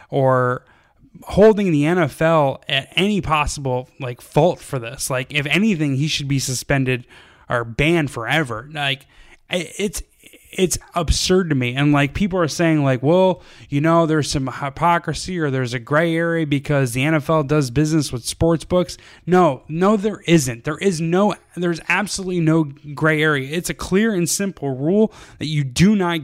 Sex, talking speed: male, 170 wpm